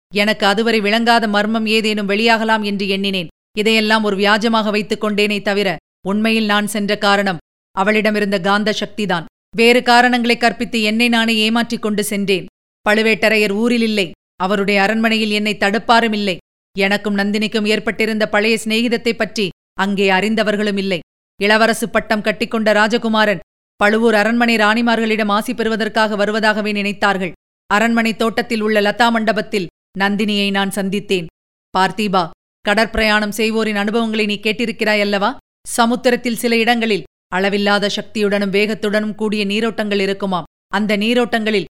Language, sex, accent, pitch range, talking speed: Tamil, female, native, 205-225 Hz, 115 wpm